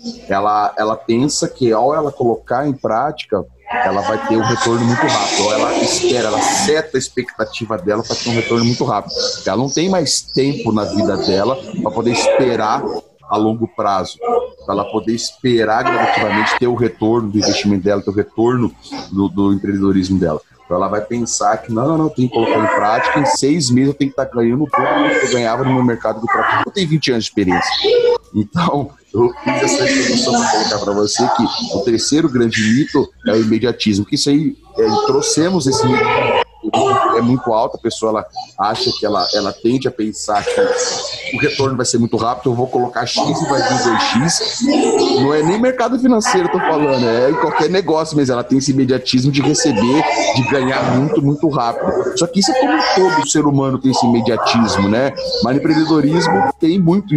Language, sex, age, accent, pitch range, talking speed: Portuguese, male, 30-49, Brazilian, 115-175 Hz, 195 wpm